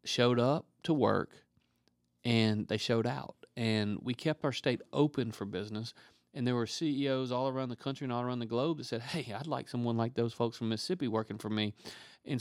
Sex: male